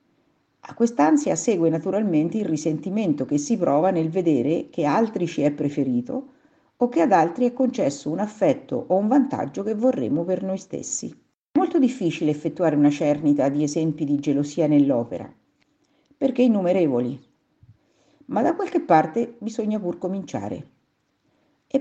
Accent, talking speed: native, 145 wpm